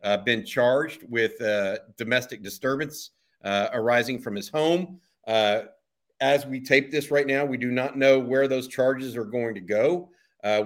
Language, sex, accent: English, male, American